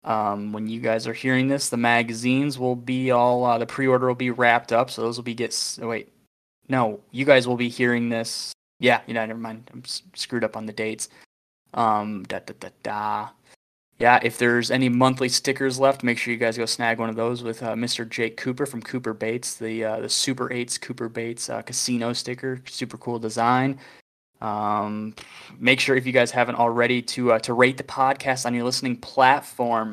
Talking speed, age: 210 wpm, 20-39